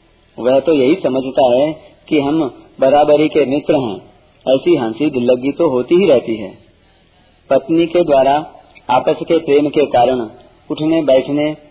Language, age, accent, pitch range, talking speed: Hindi, 40-59, native, 125-155 Hz, 150 wpm